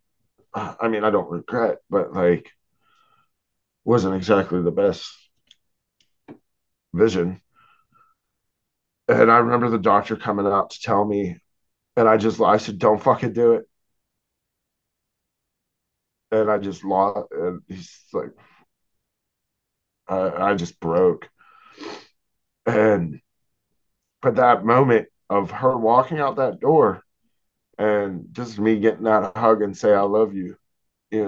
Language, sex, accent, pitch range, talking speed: English, male, American, 100-125 Hz, 125 wpm